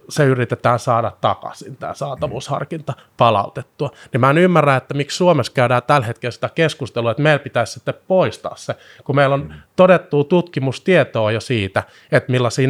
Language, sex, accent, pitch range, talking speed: Finnish, male, native, 120-150 Hz, 160 wpm